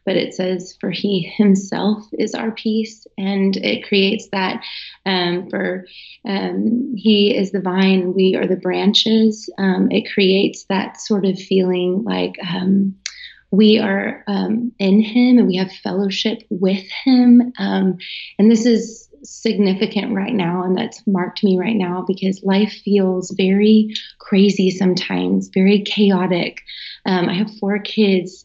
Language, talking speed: English, 150 wpm